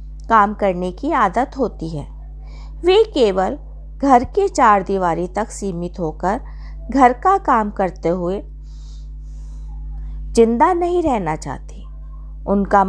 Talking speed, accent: 125 wpm, native